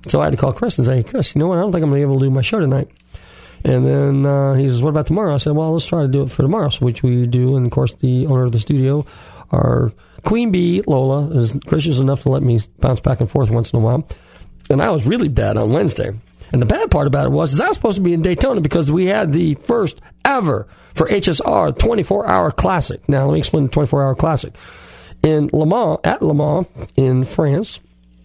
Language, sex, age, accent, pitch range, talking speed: English, male, 40-59, American, 130-155 Hz, 255 wpm